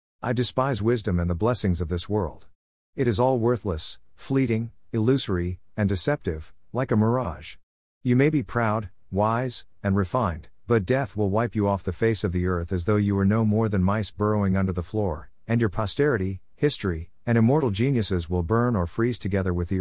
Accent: American